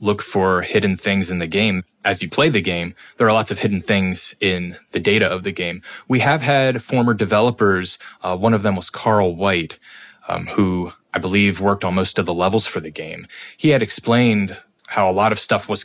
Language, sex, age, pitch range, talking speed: English, male, 20-39, 100-130 Hz, 220 wpm